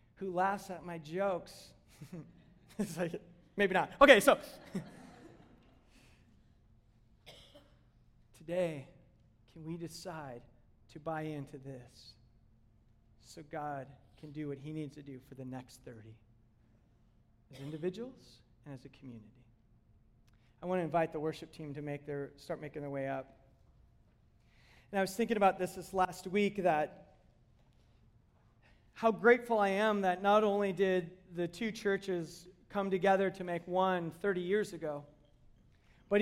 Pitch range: 125-195 Hz